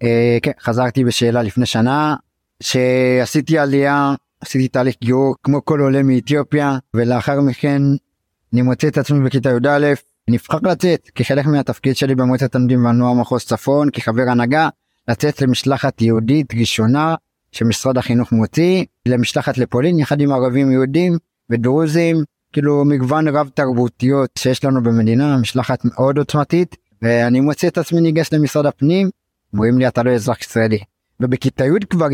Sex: male